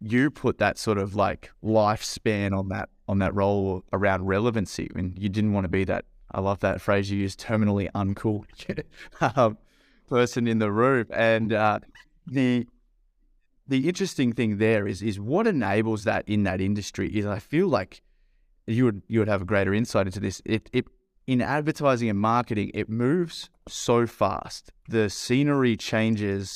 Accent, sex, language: Australian, male, English